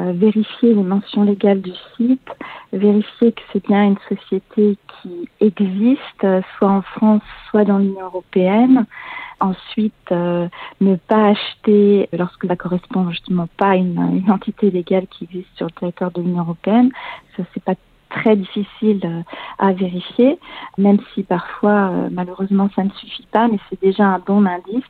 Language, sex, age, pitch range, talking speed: French, female, 40-59, 195-225 Hz, 155 wpm